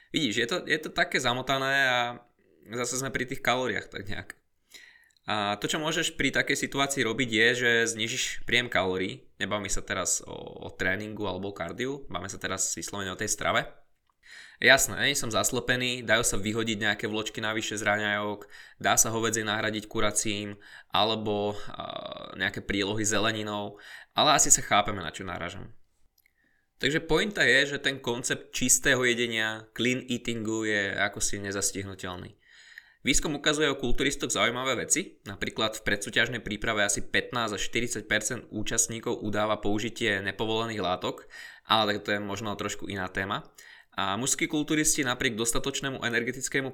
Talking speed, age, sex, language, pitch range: 150 wpm, 20-39, male, Slovak, 105-125 Hz